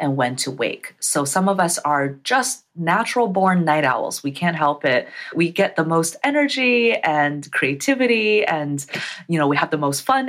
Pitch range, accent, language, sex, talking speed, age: 145-195 Hz, American, English, female, 190 wpm, 30-49